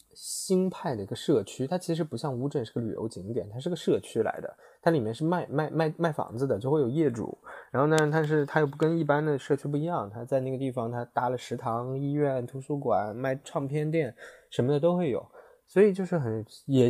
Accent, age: native, 20-39